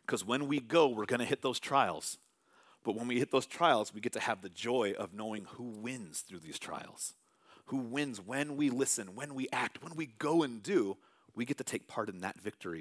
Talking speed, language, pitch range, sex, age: 235 wpm, English, 120-150 Hz, male, 40-59